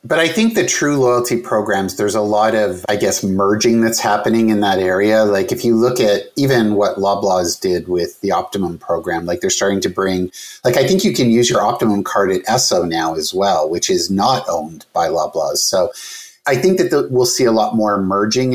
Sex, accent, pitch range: male, American, 90-125 Hz